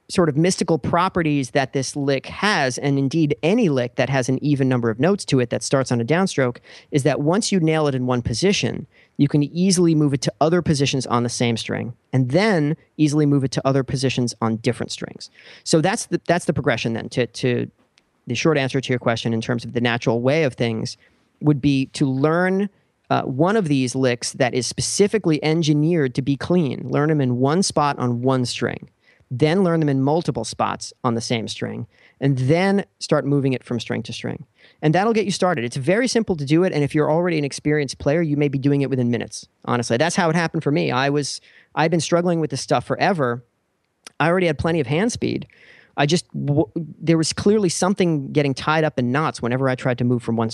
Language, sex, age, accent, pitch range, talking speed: English, male, 40-59, American, 125-165 Hz, 230 wpm